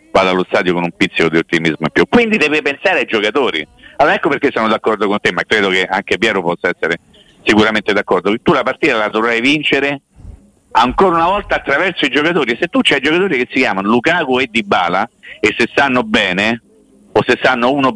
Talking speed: 205 wpm